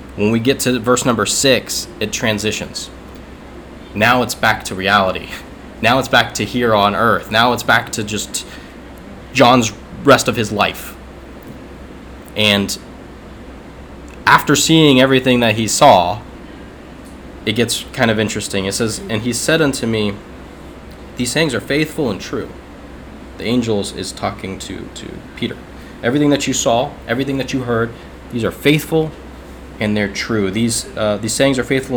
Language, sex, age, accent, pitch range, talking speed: English, male, 20-39, American, 100-125 Hz, 160 wpm